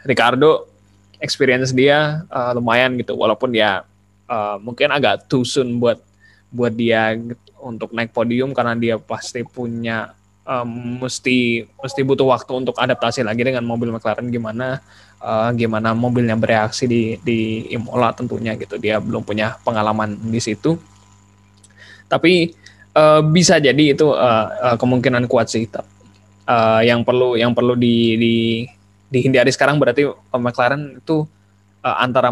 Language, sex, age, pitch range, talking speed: Indonesian, male, 20-39, 110-130 Hz, 135 wpm